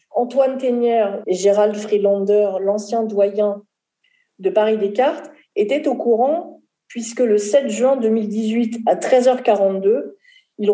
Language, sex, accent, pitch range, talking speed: French, female, French, 210-255 Hz, 110 wpm